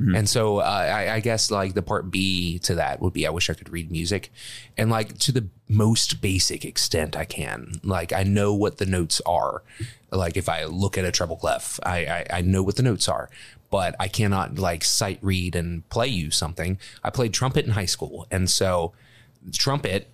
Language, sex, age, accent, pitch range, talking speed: English, male, 30-49, American, 90-110 Hz, 210 wpm